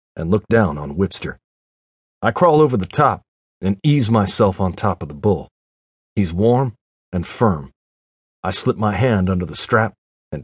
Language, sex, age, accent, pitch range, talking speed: English, male, 40-59, American, 80-120 Hz, 170 wpm